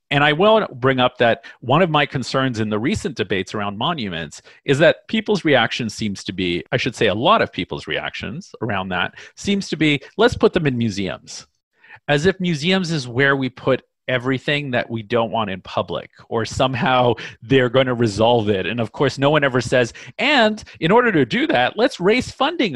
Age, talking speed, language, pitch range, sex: 40-59, 205 wpm, English, 120-160 Hz, male